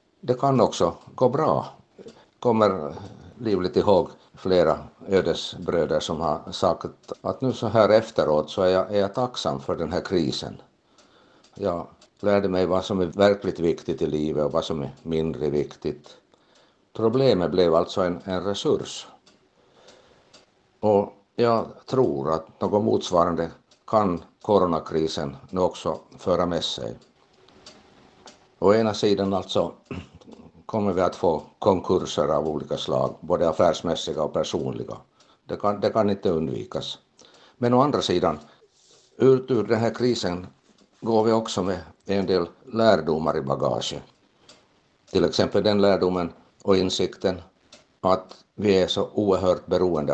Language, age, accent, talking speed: Swedish, 60-79, Finnish, 135 wpm